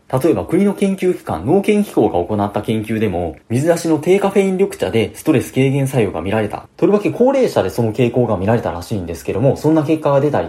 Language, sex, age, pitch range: Japanese, male, 30-49, 100-170 Hz